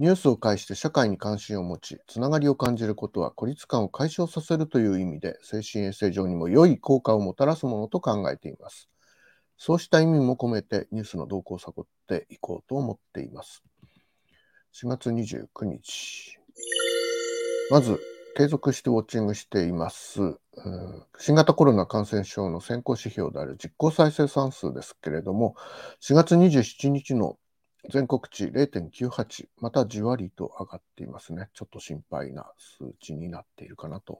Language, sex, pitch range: Japanese, male, 100-140 Hz